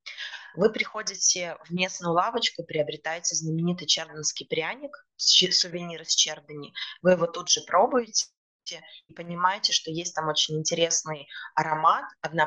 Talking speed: 125 wpm